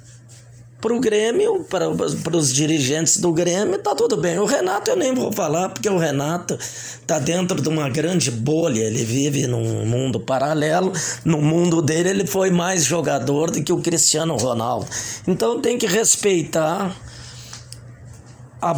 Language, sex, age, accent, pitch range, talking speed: Portuguese, male, 20-39, Brazilian, 125-185 Hz, 155 wpm